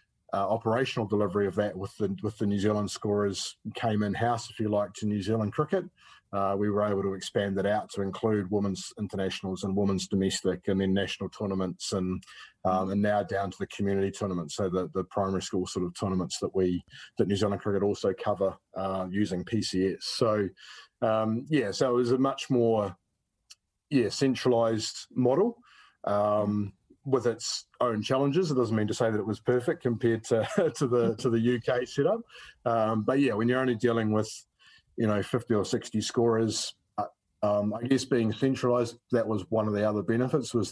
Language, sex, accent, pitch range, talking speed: English, male, Australian, 100-120 Hz, 190 wpm